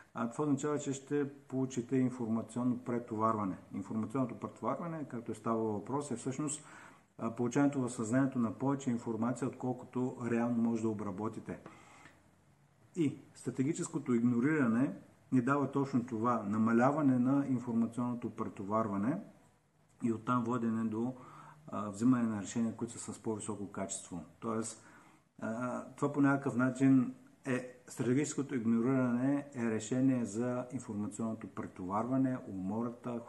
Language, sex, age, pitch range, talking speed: Bulgarian, male, 50-69, 110-130 Hz, 115 wpm